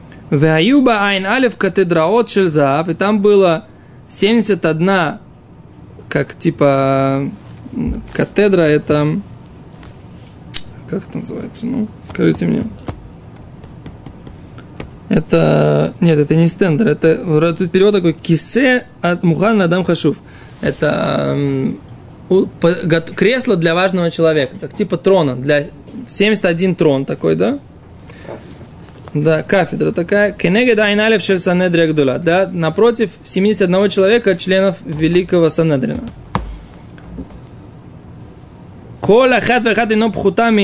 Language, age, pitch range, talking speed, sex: Russian, 20-39, 150-200 Hz, 85 wpm, male